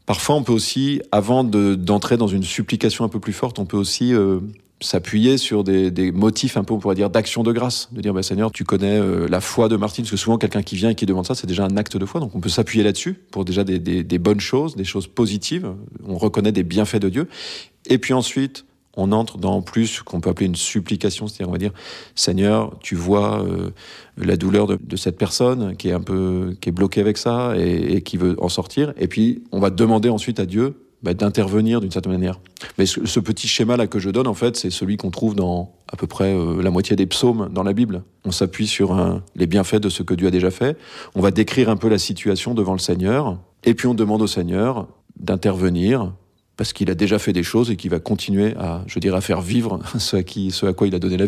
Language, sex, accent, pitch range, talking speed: French, male, French, 95-115 Hz, 255 wpm